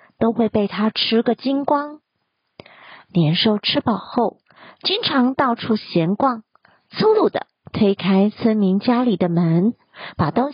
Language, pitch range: Chinese, 200-260 Hz